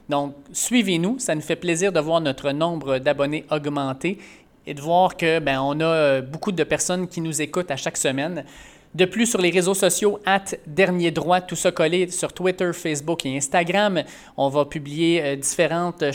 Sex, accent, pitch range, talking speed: male, Canadian, 140-170 Hz, 195 wpm